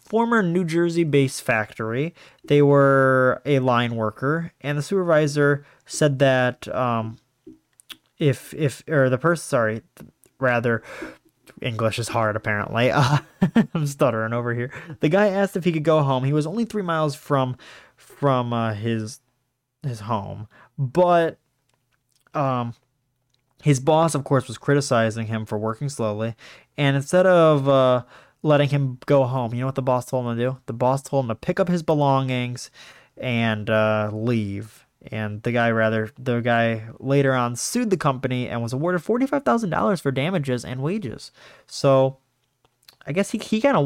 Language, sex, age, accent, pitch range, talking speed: English, male, 20-39, American, 120-150 Hz, 165 wpm